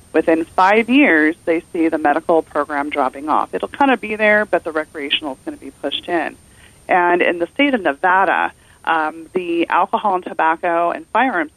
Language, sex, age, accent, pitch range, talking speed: English, female, 30-49, American, 160-220 Hz, 190 wpm